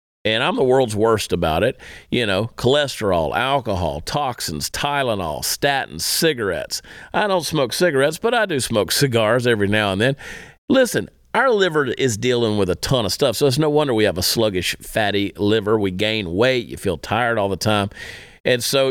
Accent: American